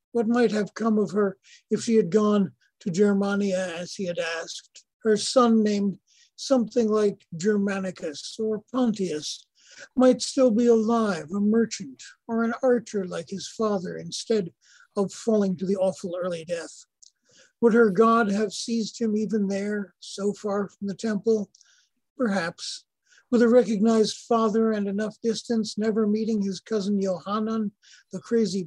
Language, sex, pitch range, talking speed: English, male, 185-225 Hz, 150 wpm